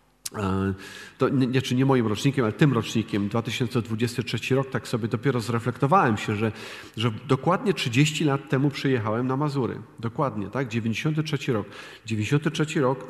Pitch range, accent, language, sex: 115-140 Hz, native, Polish, male